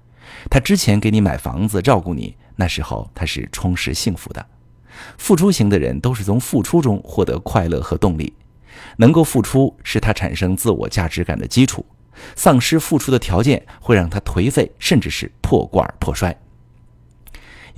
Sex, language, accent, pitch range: male, Chinese, native, 85-120 Hz